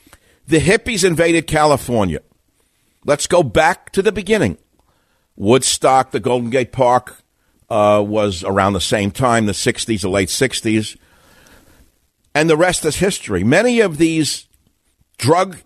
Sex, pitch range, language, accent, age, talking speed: male, 100-145 Hz, English, American, 60-79, 135 wpm